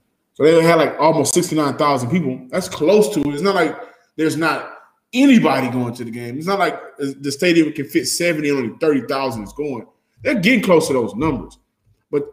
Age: 20-39